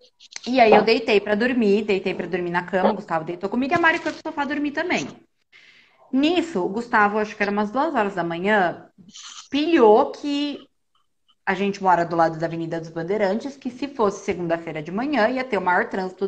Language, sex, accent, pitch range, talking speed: Portuguese, female, Brazilian, 170-240 Hz, 205 wpm